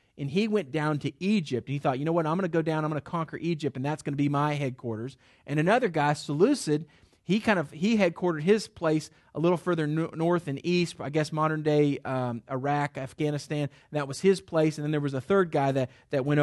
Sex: male